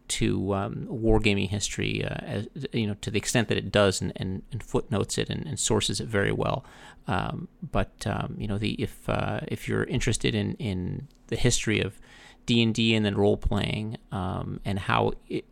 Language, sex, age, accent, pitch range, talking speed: English, male, 30-49, American, 100-120 Hz, 200 wpm